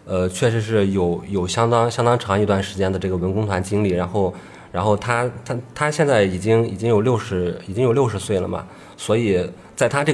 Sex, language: male, Chinese